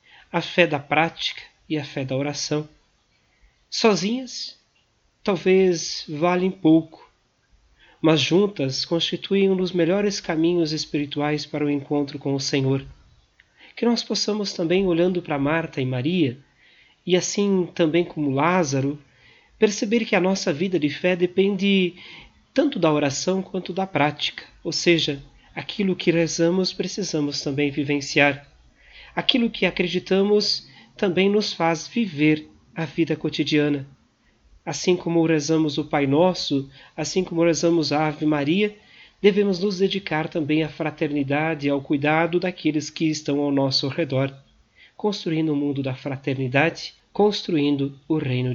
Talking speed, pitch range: 135 wpm, 145-180 Hz